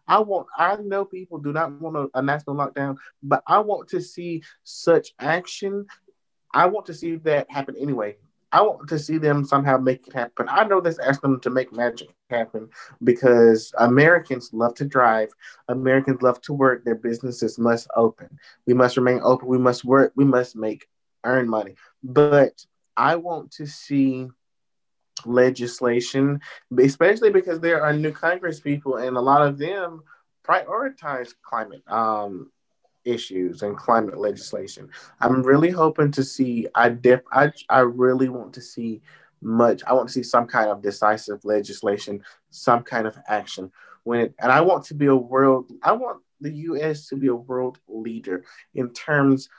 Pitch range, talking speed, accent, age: 120-150 Hz, 170 wpm, American, 20-39